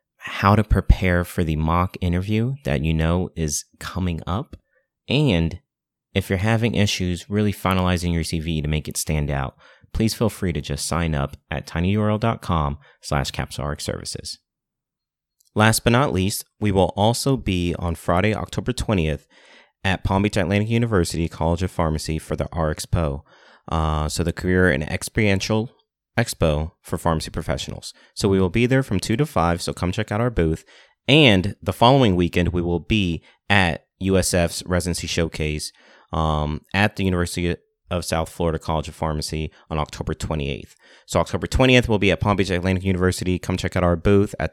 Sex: male